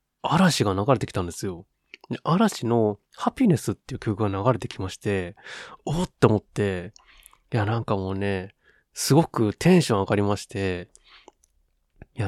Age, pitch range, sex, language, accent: 20-39, 100-155 Hz, male, Japanese, native